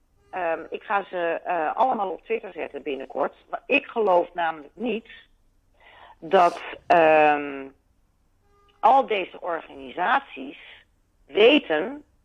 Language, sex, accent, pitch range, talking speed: Dutch, female, Dutch, 160-225 Hz, 105 wpm